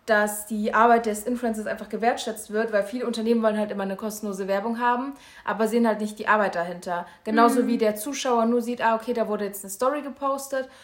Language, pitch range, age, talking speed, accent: German, 205-245 Hz, 20-39, 215 wpm, German